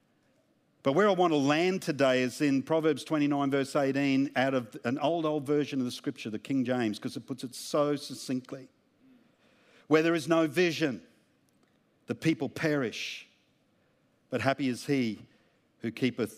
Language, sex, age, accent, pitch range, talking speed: English, male, 50-69, Australian, 150-215 Hz, 165 wpm